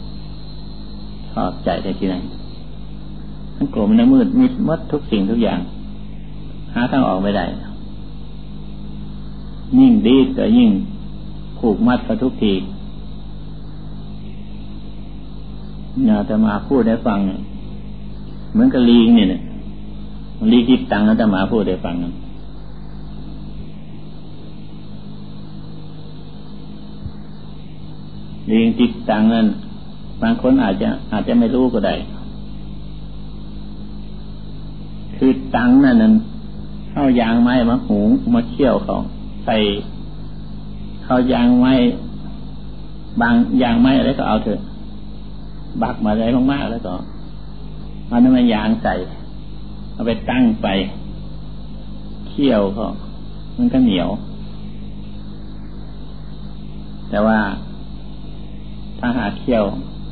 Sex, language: male, Thai